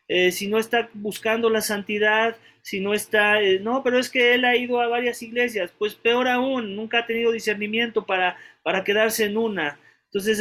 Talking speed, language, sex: 195 wpm, English, male